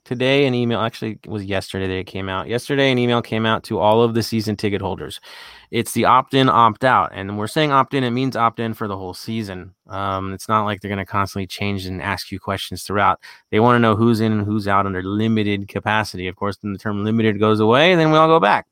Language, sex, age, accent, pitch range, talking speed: English, male, 20-39, American, 100-125 Hz, 260 wpm